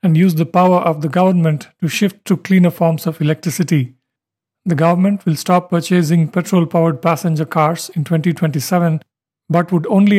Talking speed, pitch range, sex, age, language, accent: 160 wpm, 160-180 Hz, male, 50-69, English, Indian